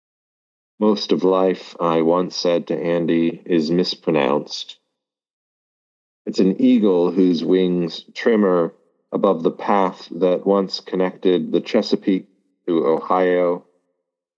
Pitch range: 80-95 Hz